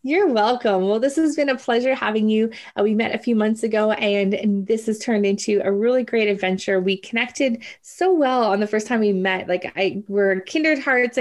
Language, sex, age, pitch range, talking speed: English, female, 20-39, 200-250 Hz, 225 wpm